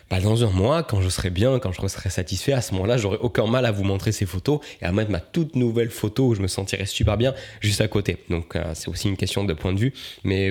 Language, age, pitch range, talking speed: French, 20-39, 95-120 Hz, 280 wpm